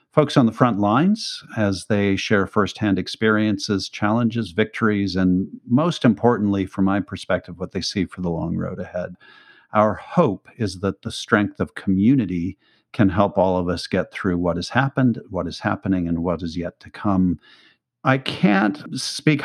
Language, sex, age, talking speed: English, male, 50-69, 175 wpm